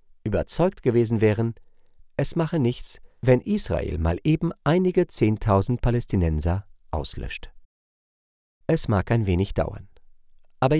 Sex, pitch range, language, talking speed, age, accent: male, 90-140 Hz, German, 110 wpm, 50-69, German